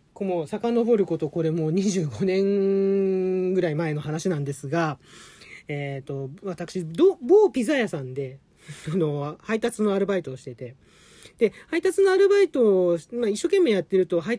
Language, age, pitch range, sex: Japanese, 40-59, 145-215 Hz, male